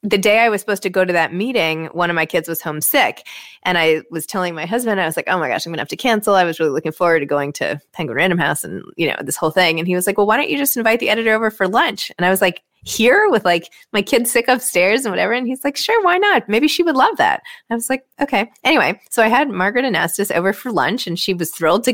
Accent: American